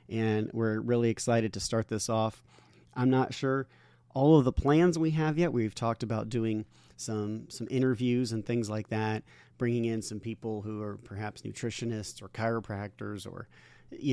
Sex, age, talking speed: male, 40-59, 175 wpm